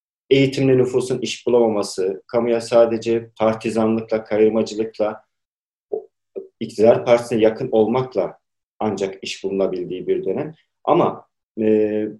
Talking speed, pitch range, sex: 95 wpm, 110-160 Hz, male